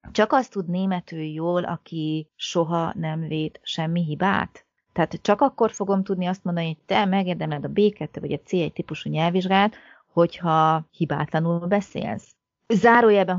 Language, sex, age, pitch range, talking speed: Hungarian, female, 30-49, 155-205 Hz, 145 wpm